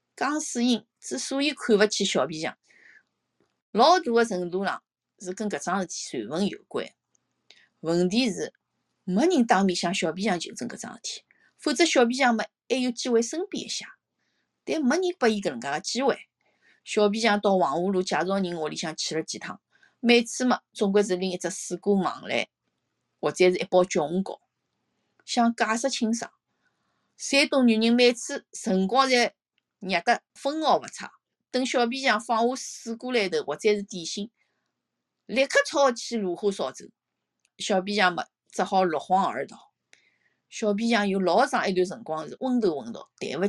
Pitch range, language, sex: 190-250 Hz, Chinese, female